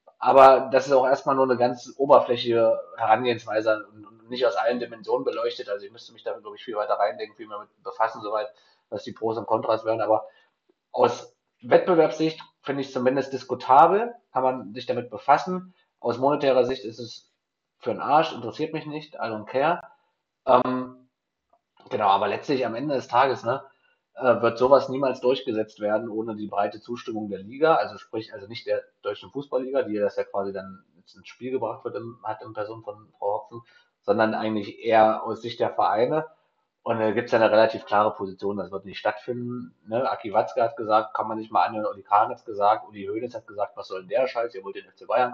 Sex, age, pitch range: male, 30-49, 110-155 Hz